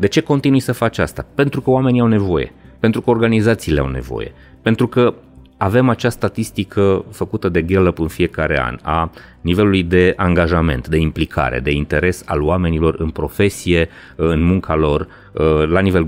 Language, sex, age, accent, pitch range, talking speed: Romanian, male, 30-49, native, 80-100 Hz, 165 wpm